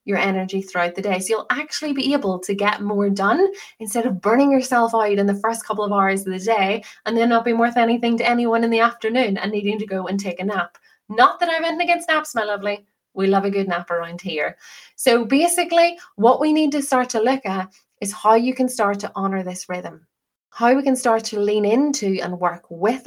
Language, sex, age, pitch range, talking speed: English, female, 20-39, 195-250 Hz, 235 wpm